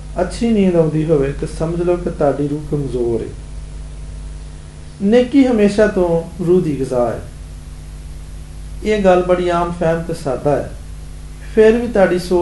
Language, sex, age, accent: Hindi, male, 40-59, native